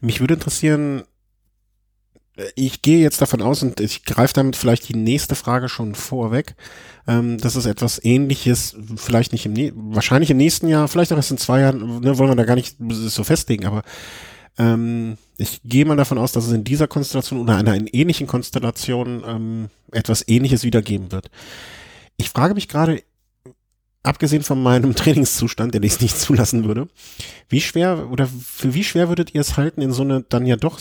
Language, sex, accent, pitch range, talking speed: German, male, German, 115-145 Hz, 180 wpm